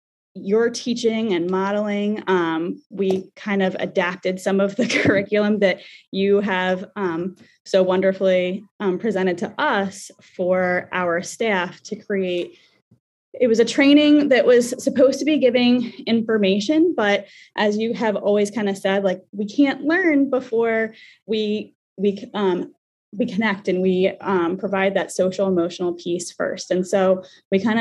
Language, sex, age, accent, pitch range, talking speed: English, female, 20-39, American, 185-220 Hz, 150 wpm